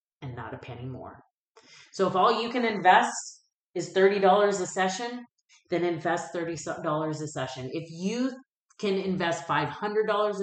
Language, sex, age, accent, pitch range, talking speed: English, female, 30-49, American, 155-185 Hz, 145 wpm